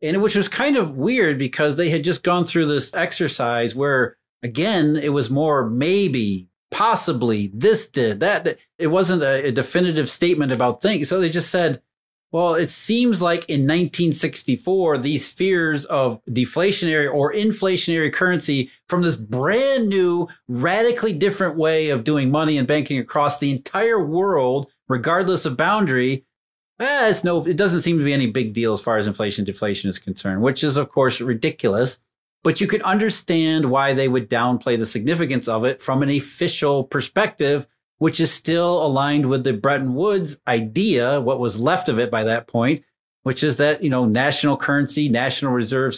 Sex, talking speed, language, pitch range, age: male, 170 wpm, English, 130-175 Hz, 30-49